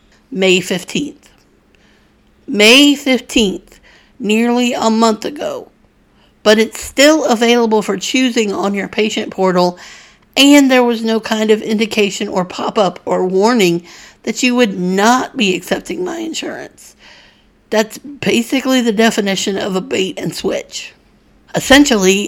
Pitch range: 195-240 Hz